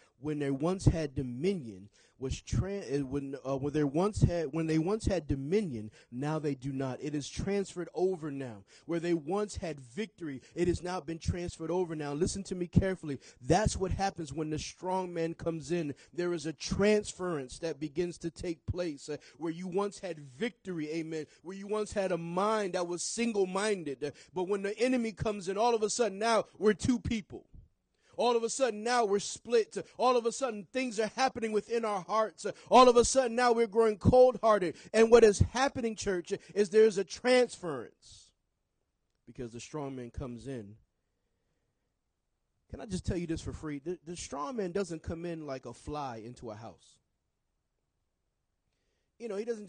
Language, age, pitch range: English, 30-49, 140-205 Hz